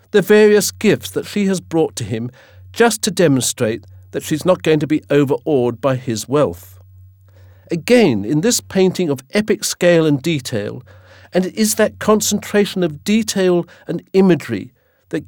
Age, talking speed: 50-69, 160 wpm